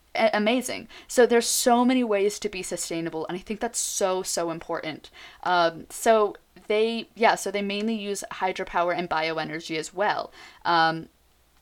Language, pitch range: English, 175-220 Hz